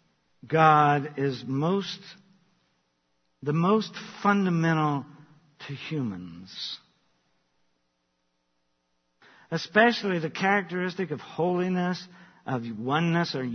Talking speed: 70 wpm